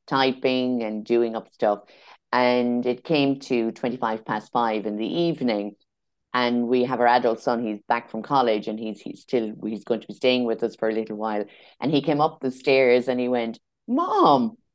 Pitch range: 115-175 Hz